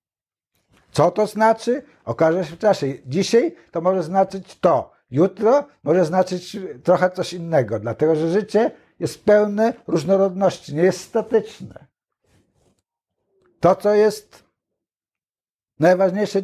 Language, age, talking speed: Polish, 60-79, 115 wpm